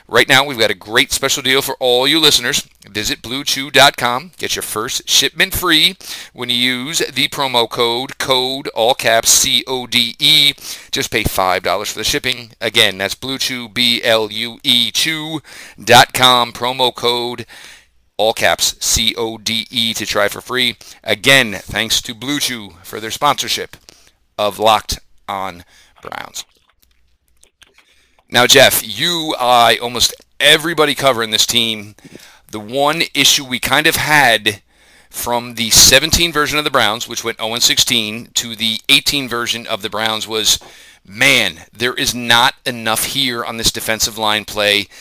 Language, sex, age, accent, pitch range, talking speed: English, male, 40-59, American, 110-135 Hz, 140 wpm